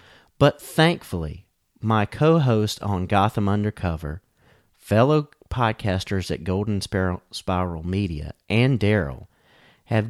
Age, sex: 40-59, male